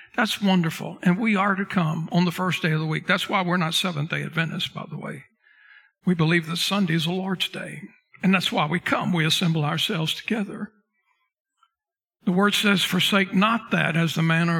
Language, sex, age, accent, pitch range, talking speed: English, male, 60-79, American, 165-230 Hz, 200 wpm